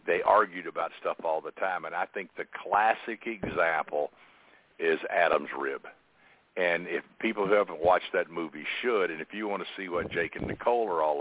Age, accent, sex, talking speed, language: 60-79, American, male, 200 wpm, English